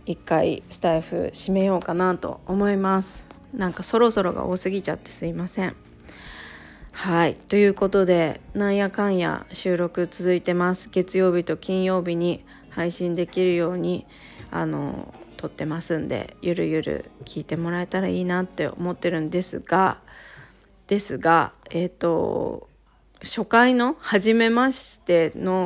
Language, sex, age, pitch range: Japanese, female, 20-39, 170-210 Hz